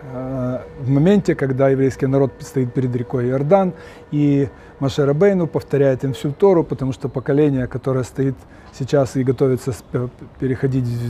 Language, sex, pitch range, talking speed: Russian, male, 130-155 Hz, 135 wpm